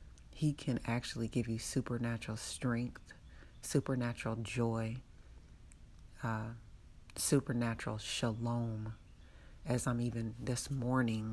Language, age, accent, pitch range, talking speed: English, 30-49, American, 110-120 Hz, 90 wpm